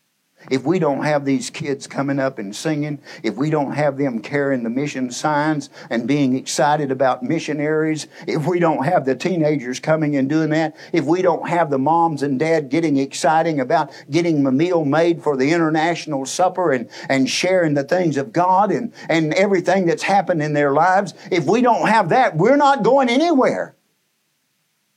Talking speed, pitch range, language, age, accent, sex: 185 wpm, 130-160 Hz, English, 50-69, American, male